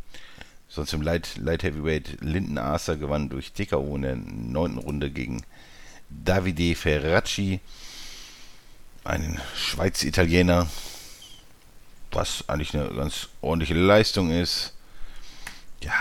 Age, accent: 50-69, German